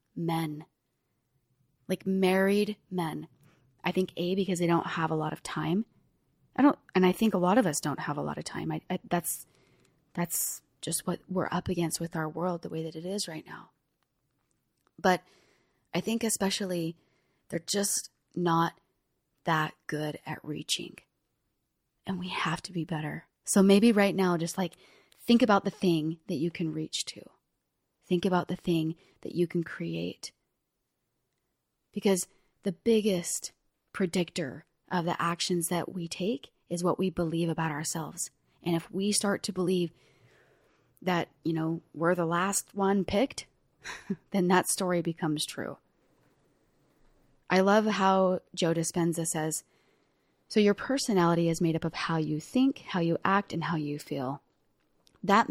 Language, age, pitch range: English, 20-39, 160-190 Hz